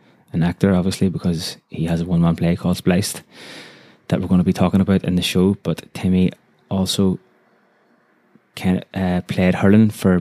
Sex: male